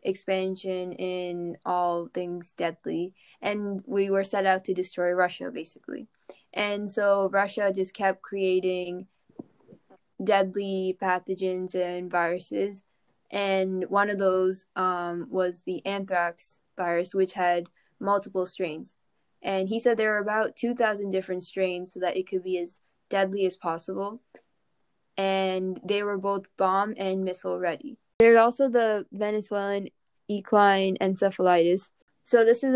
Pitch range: 180-200 Hz